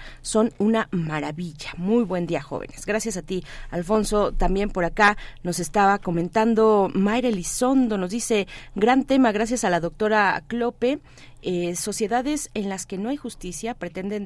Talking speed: 155 wpm